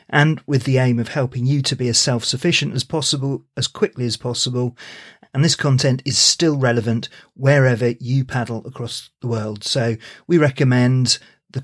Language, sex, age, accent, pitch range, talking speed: English, male, 40-59, British, 115-140 Hz, 170 wpm